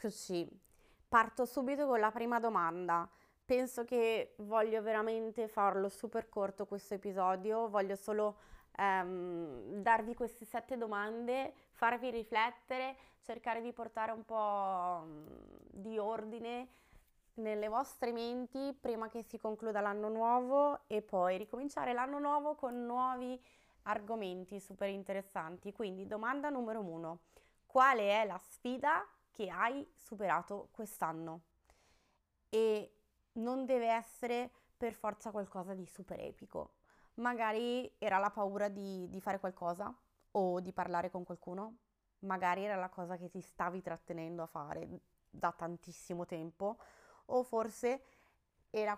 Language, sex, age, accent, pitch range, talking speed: Italian, female, 20-39, native, 190-235 Hz, 125 wpm